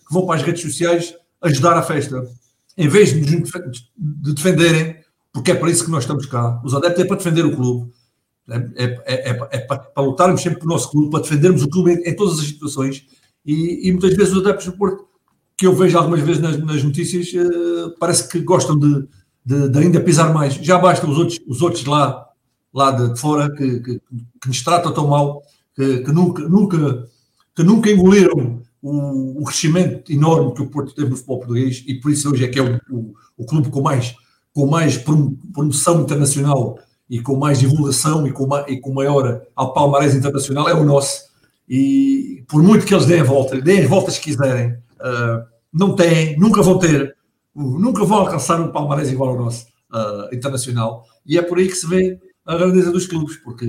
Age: 50-69